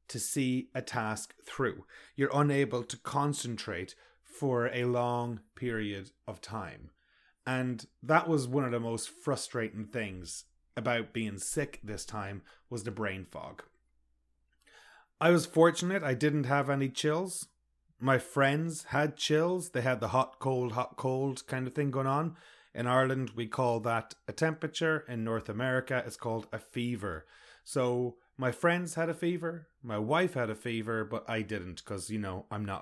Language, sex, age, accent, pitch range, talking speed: English, male, 30-49, Irish, 110-150 Hz, 165 wpm